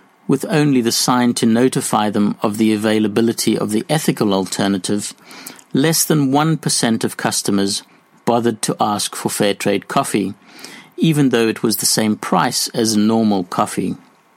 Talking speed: 150 wpm